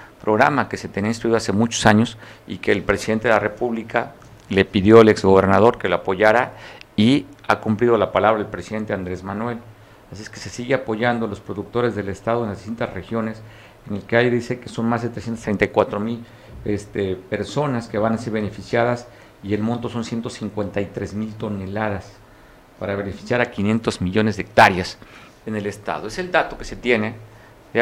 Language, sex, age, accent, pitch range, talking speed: Spanish, male, 50-69, Mexican, 105-120 Hz, 185 wpm